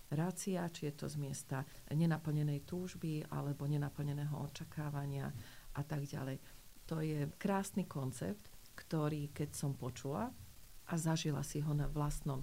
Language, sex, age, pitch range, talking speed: Slovak, female, 40-59, 140-160 Hz, 135 wpm